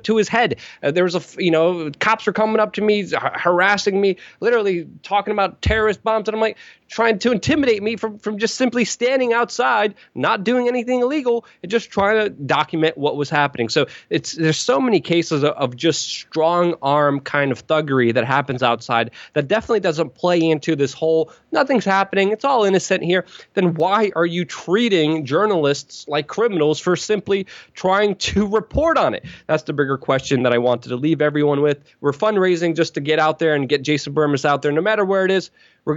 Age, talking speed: 20-39, 200 wpm